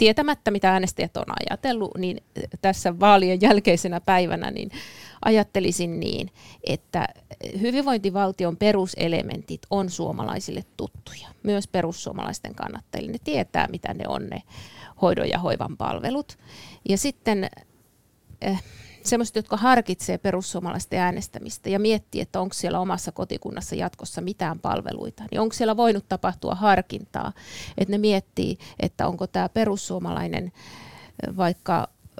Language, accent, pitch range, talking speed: Finnish, native, 175-210 Hz, 115 wpm